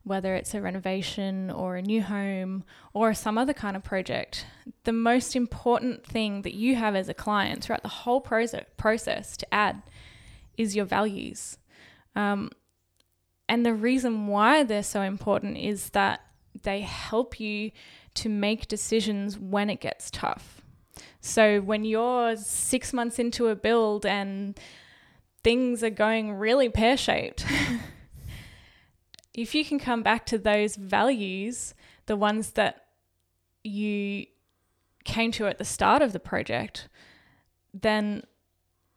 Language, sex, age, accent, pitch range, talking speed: English, female, 10-29, Australian, 195-225 Hz, 135 wpm